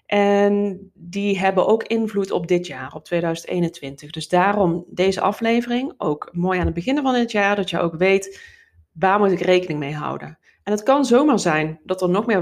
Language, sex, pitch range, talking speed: Dutch, female, 165-200 Hz, 200 wpm